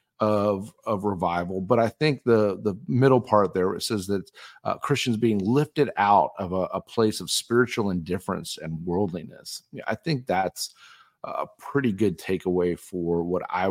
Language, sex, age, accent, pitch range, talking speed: English, male, 40-59, American, 95-115 Hz, 170 wpm